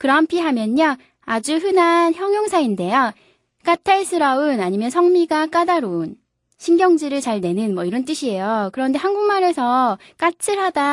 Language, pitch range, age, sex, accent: Korean, 210-315 Hz, 20-39, female, native